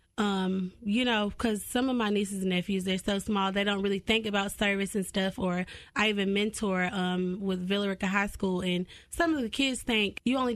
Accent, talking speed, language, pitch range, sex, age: American, 215 wpm, English, 195-225 Hz, female, 20-39